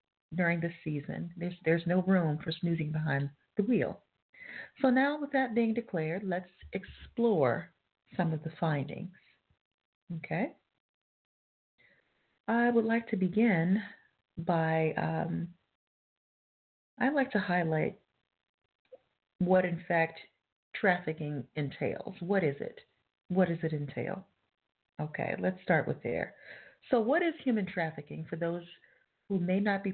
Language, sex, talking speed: English, female, 130 wpm